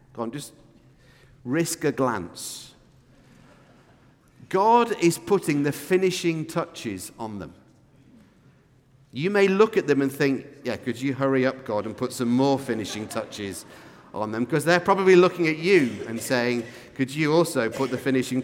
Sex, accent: male, British